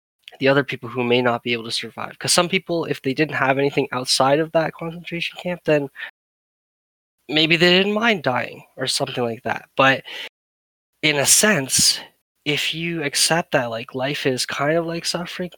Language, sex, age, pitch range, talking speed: English, male, 10-29, 120-150 Hz, 185 wpm